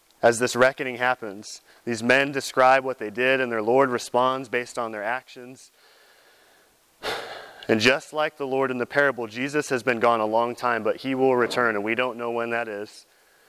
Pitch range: 110-130 Hz